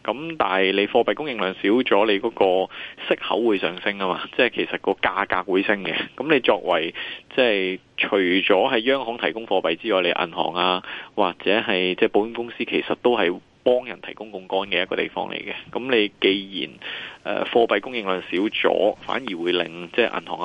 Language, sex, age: Chinese, male, 20-39